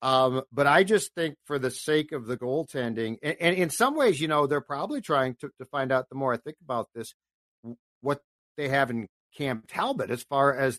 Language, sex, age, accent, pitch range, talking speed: English, male, 50-69, American, 130-165 Hz, 220 wpm